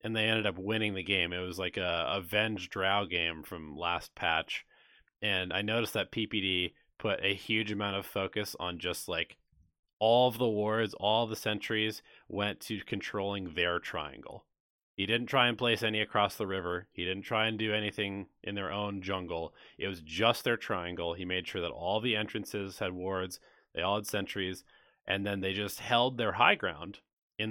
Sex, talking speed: male, 195 wpm